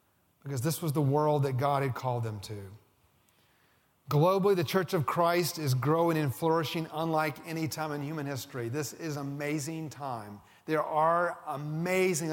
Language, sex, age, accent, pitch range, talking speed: English, male, 40-59, American, 145-180 Hz, 165 wpm